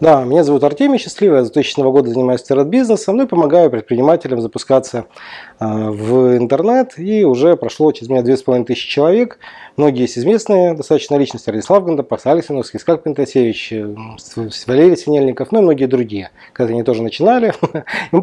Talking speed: 160 wpm